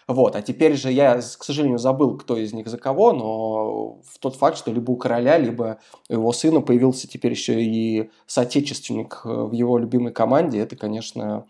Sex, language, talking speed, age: male, Russian, 175 wpm, 20-39